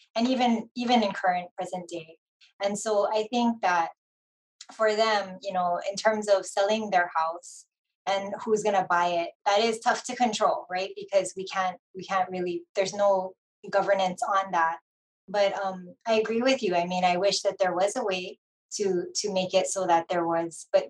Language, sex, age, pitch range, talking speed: English, female, 20-39, 180-200 Hz, 195 wpm